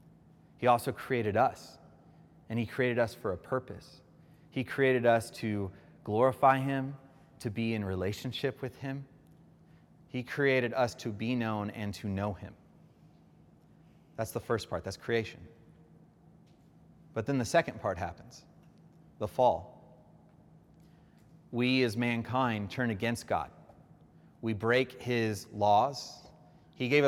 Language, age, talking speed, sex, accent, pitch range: English, 30-49, 130 wpm, male, American, 105-130 Hz